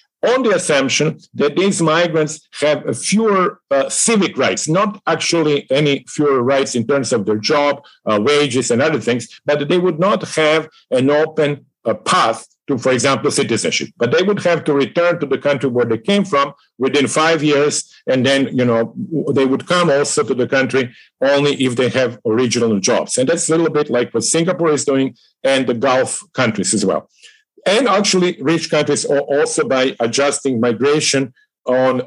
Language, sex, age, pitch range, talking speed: English, male, 50-69, 130-165 Hz, 180 wpm